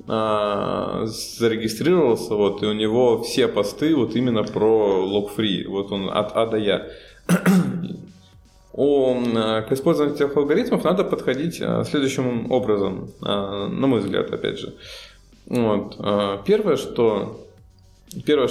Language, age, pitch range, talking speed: Russian, 20-39, 100-130 Hz, 115 wpm